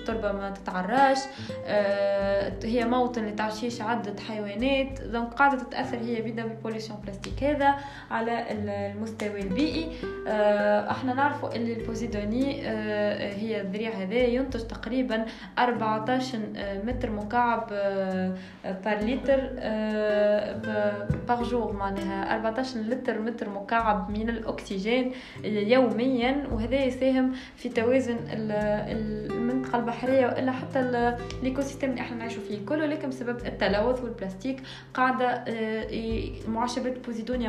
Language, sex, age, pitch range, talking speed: Arabic, female, 20-39, 210-260 Hz, 100 wpm